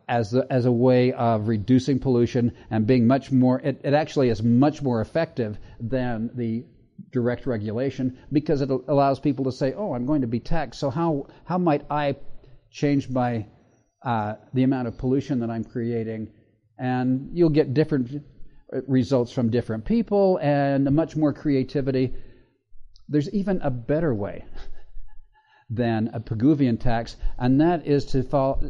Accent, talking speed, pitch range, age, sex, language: American, 160 wpm, 115-140 Hz, 50-69, male, English